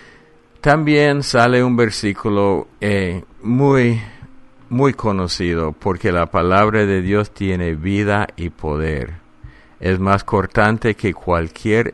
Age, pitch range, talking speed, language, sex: 50-69, 90-115 Hz, 110 wpm, English, male